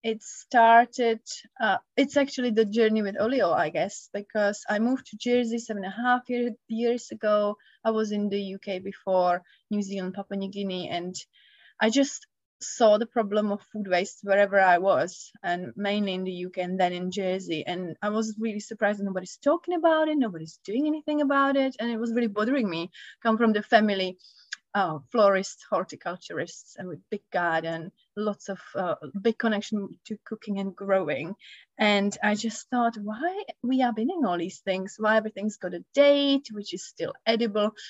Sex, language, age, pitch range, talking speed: female, English, 20-39, 200-245 Hz, 185 wpm